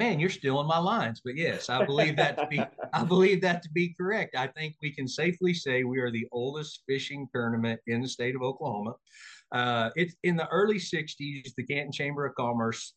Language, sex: English, male